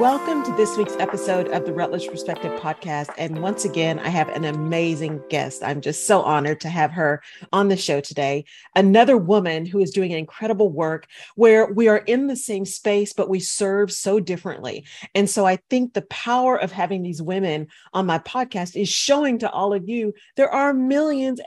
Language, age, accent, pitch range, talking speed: English, 40-59, American, 175-225 Hz, 195 wpm